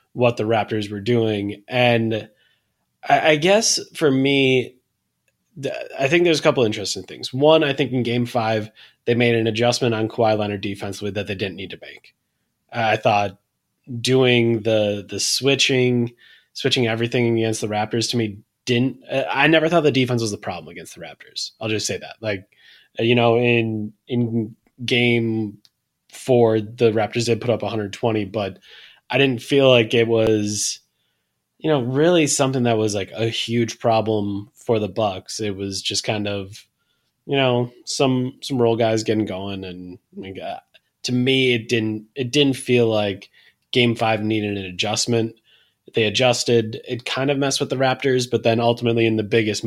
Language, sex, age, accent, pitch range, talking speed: English, male, 20-39, American, 110-125 Hz, 175 wpm